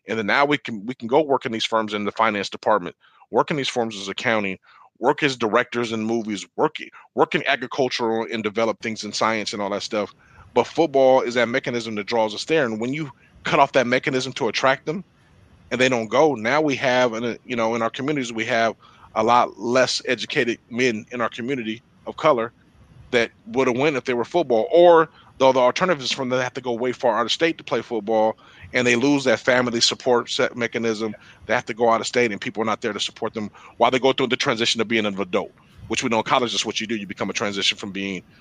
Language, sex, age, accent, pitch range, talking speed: English, male, 30-49, American, 110-130 Hz, 245 wpm